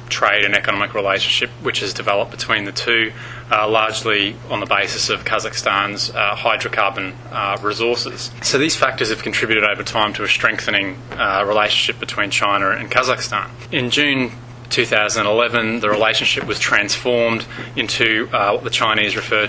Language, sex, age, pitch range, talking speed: English, male, 20-39, 105-120 Hz, 155 wpm